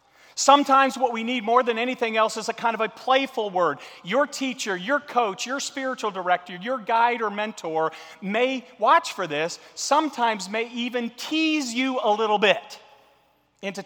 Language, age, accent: English, 40-59, American